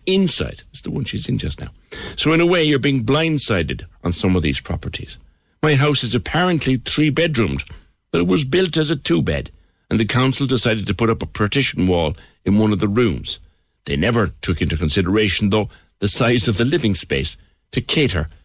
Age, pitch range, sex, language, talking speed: 60-79, 80-120 Hz, male, English, 200 wpm